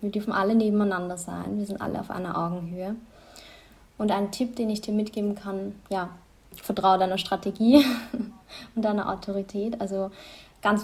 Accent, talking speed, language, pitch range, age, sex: German, 155 wpm, German, 195-215 Hz, 20-39, female